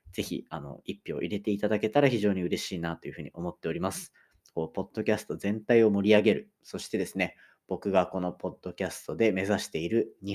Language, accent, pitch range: Japanese, native, 90-120 Hz